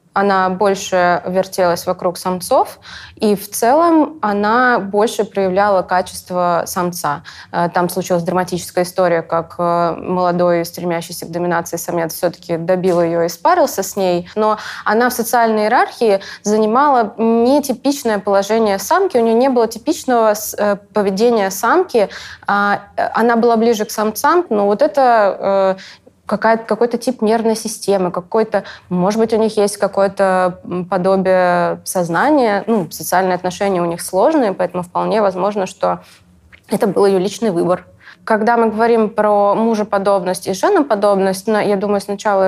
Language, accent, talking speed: Russian, native, 130 wpm